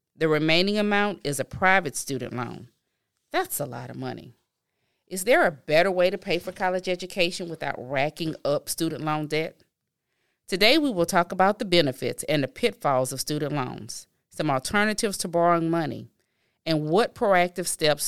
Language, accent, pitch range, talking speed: English, American, 145-185 Hz, 170 wpm